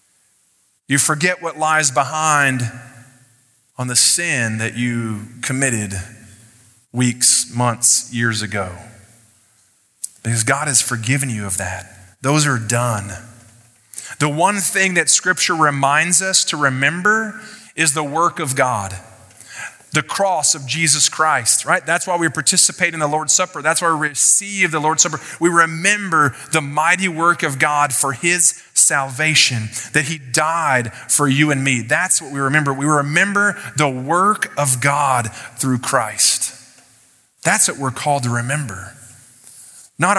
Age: 30-49